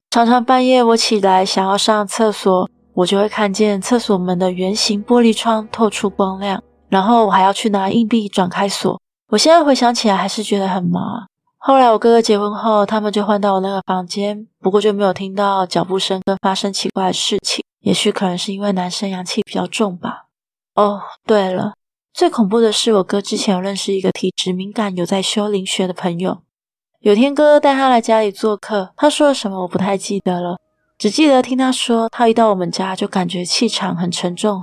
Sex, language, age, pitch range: female, Chinese, 20-39, 190-220 Hz